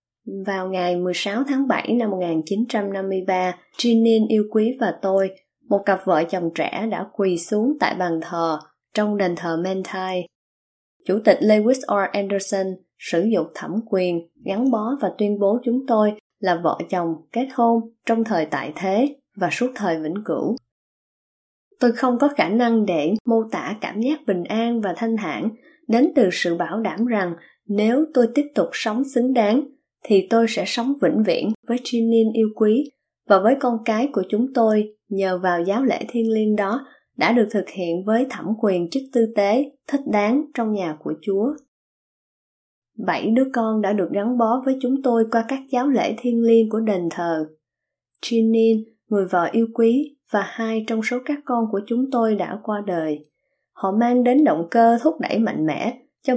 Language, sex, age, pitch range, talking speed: Vietnamese, female, 20-39, 190-240 Hz, 180 wpm